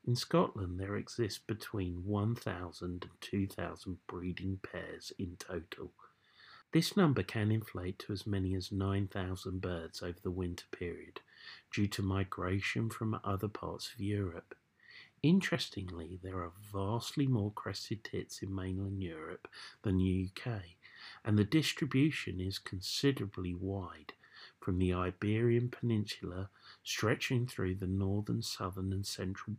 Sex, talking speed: male, 130 wpm